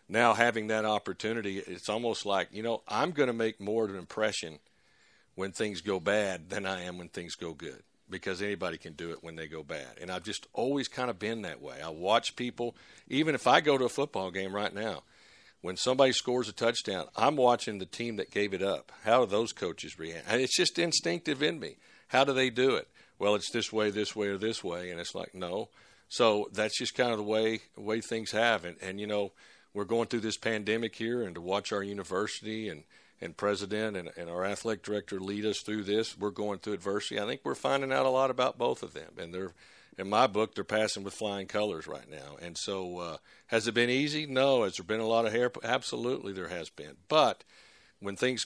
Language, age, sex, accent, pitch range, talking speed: English, 50-69, male, American, 95-115 Hz, 235 wpm